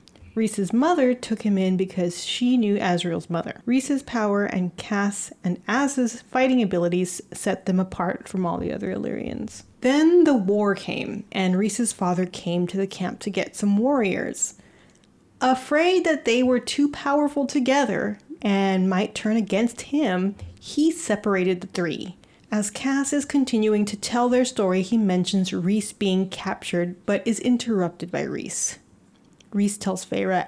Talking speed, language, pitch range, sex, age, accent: 155 wpm, English, 190-245 Hz, female, 30-49, American